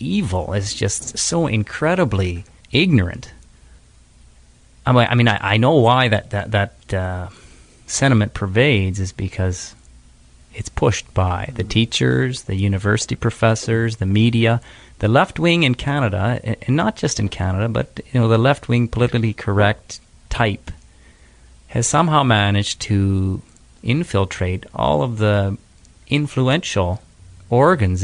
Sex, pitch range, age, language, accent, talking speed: male, 95-125 Hz, 30-49, English, American, 120 wpm